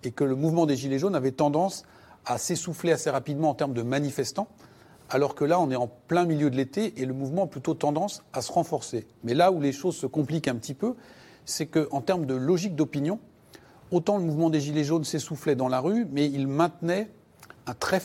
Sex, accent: male, French